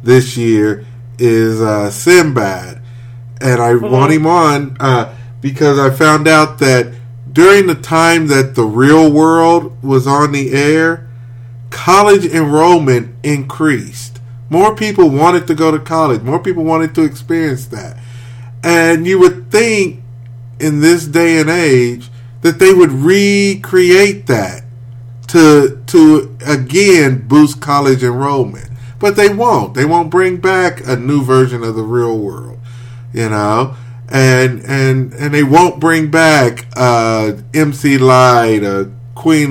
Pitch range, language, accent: 120-160 Hz, English, American